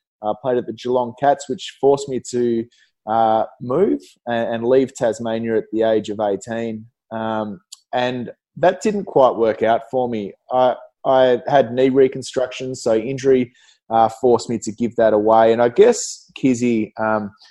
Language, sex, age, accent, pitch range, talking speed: English, male, 20-39, Australian, 110-130 Hz, 170 wpm